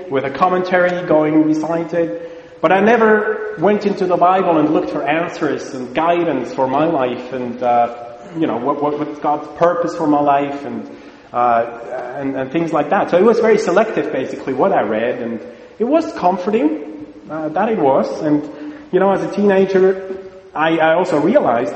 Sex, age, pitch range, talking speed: male, 30-49, 130-180 Hz, 185 wpm